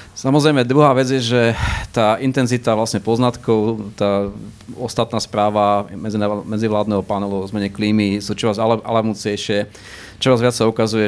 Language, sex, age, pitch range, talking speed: Slovak, male, 40-59, 100-115 Hz, 145 wpm